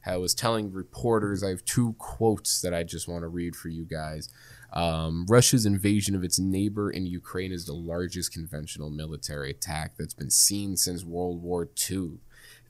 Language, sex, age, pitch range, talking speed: English, male, 20-39, 85-120 Hz, 180 wpm